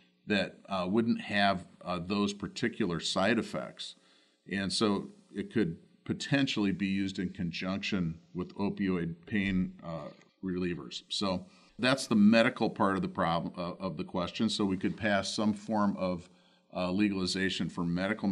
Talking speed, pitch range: 150 wpm, 90-110 Hz